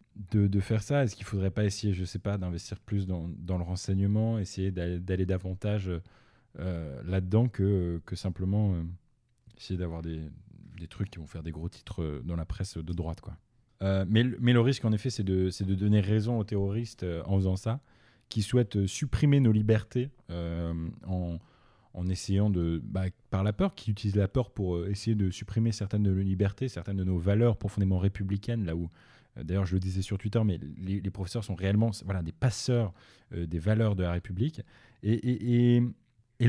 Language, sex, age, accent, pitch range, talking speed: French, male, 20-39, French, 95-115 Hz, 205 wpm